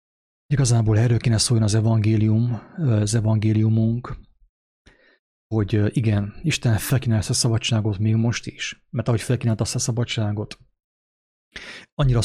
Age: 30-49